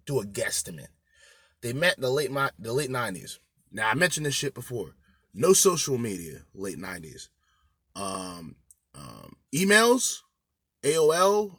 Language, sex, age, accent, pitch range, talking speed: English, male, 20-39, American, 105-155 Hz, 135 wpm